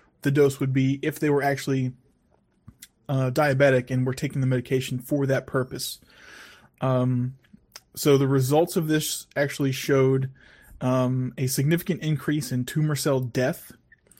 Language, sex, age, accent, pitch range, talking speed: English, male, 20-39, American, 130-145 Hz, 145 wpm